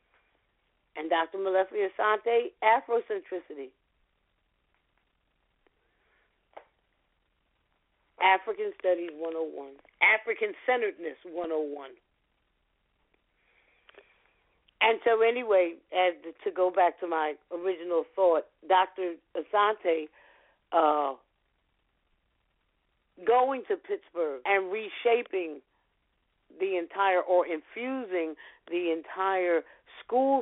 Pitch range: 165-230 Hz